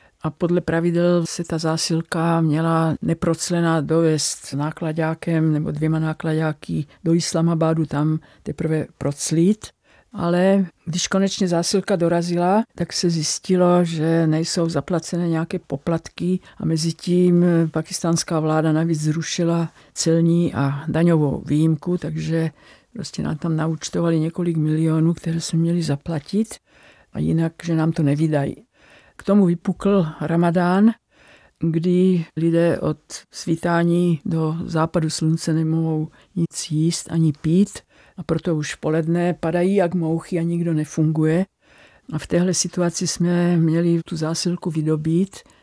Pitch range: 155-175 Hz